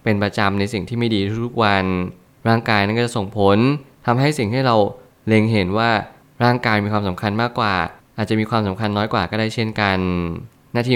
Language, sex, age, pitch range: Thai, male, 20-39, 100-120 Hz